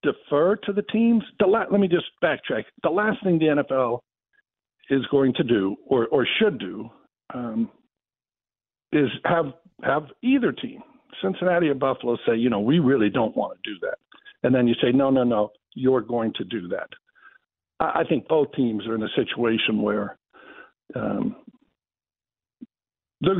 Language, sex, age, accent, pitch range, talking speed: English, male, 60-79, American, 115-175 Hz, 165 wpm